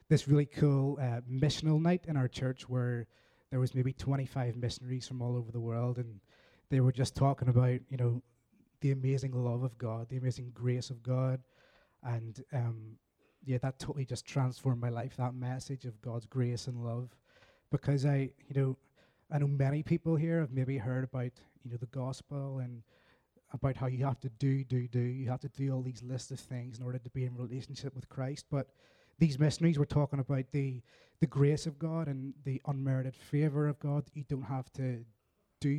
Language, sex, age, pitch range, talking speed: English, male, 20-39, 125-145 Hz, 200 wpm